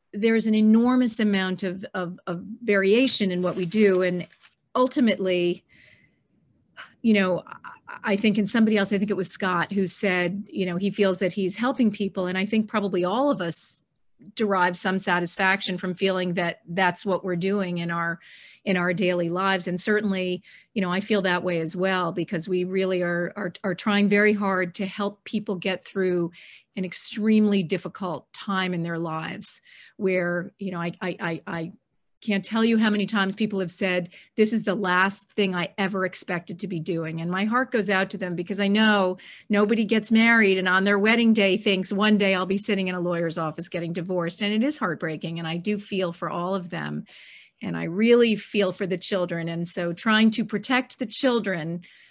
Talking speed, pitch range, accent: 200 wpm, 180-210 Hz, American